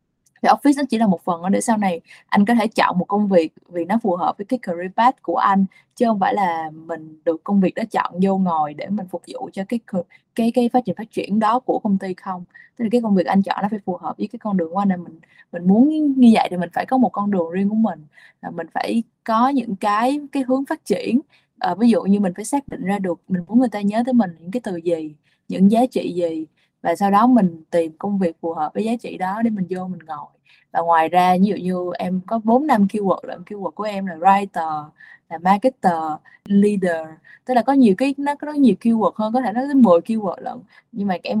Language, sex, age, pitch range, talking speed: Vietnamese, female, 20-39, 180-230 Hz, 265 wpm